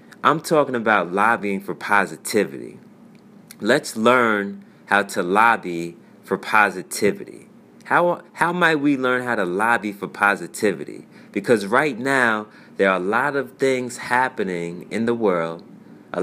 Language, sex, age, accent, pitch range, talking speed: English, male, 30-49, American, 100-145 Hz, 135 wpm